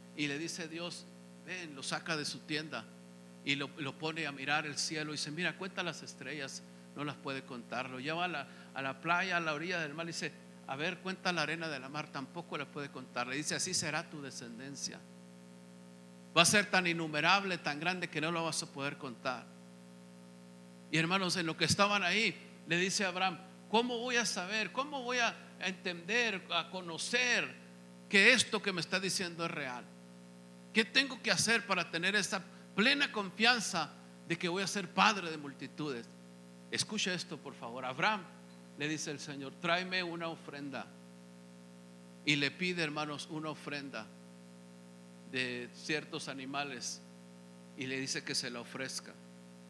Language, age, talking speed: Spanish, 50-69, 175 wpm